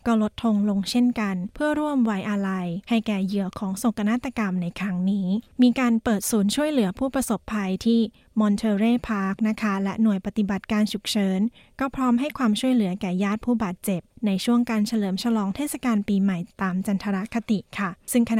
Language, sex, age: Thai, female, 20-39